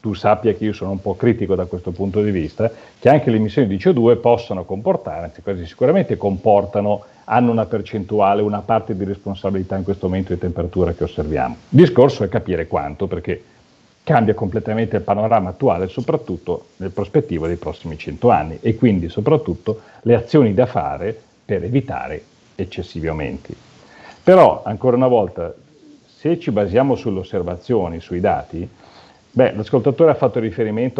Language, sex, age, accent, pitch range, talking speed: Italian, male, 40-59, native, 95-125 Hz, 165 wpm